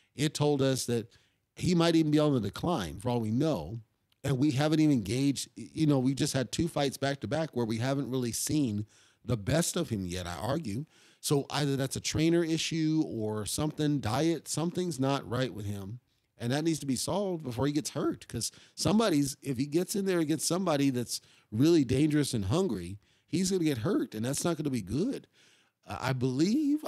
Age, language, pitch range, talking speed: 40-59, English, 115-155 Hz, 205 wpm